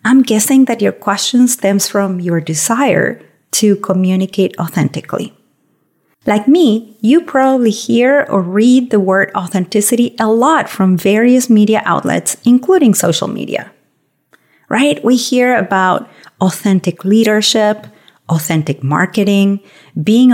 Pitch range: 185-245 Hz